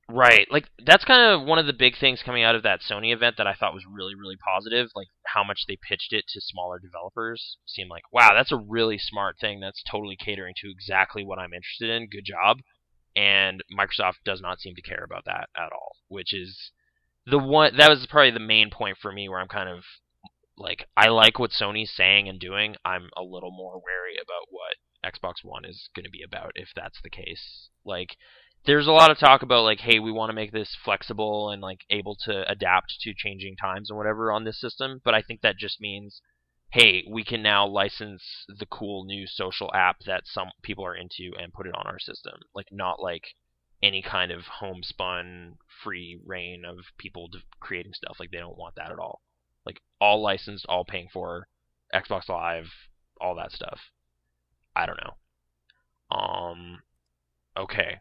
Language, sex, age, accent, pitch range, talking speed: English, male, 20-39, American, 90-110 Hz, 200 wpm